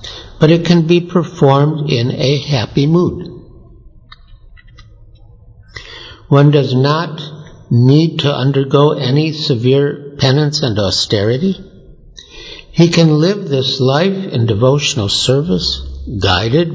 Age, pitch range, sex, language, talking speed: 60-79, 115-160 Hz, male, English, 105 wpm